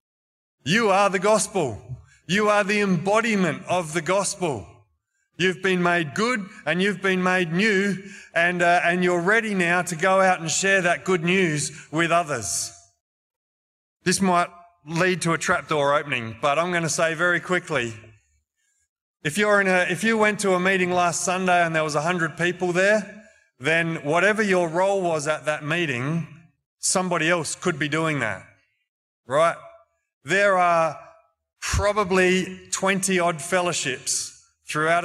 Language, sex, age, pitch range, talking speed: English, male, 30-49, 145-185 Hz, 155 wpm